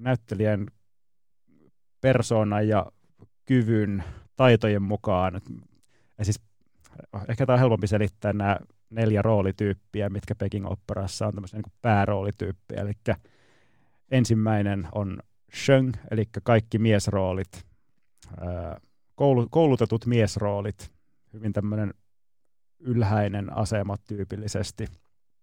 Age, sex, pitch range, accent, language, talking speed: 30-49, male, 95-110 Hz, native, Finnish, 85 wpm